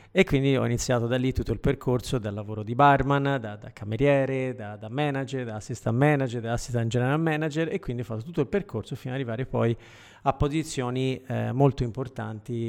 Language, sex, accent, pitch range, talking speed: Italian, male, native, 115-140 Hz, 200 wpm